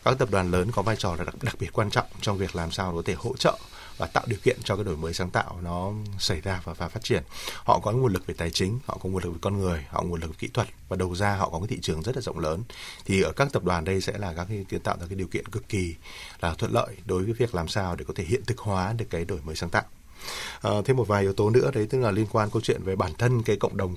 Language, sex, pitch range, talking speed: Vietnamese, male, 90-110 Hz, 320 wpm